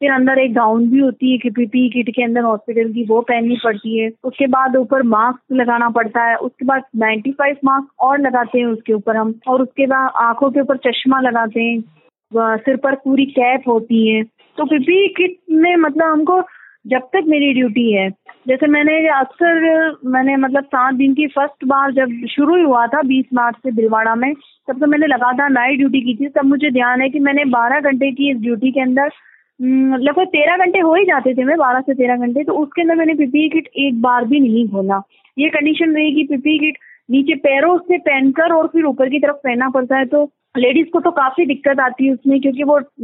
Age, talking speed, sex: 20-39, 210 wpm, female